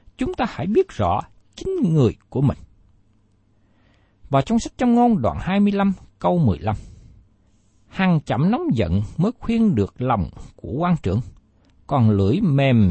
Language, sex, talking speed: Vietnamese, male, 150 wpm